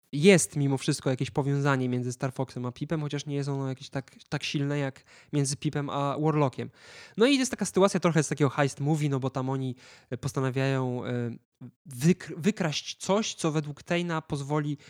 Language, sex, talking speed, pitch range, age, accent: Polish, male, 175 wpm, 130-155 Hz, 20-39, native